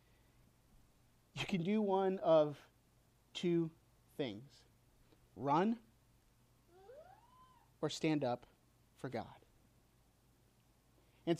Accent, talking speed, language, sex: American, 75 wpm, English, male